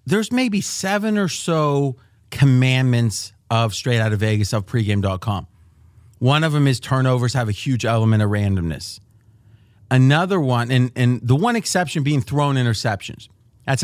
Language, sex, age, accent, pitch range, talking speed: English, male, 40-59, American, 110-145 Hz, 140 wpm